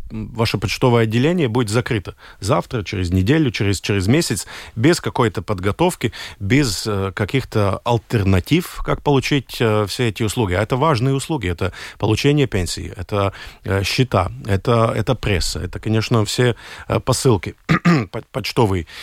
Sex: male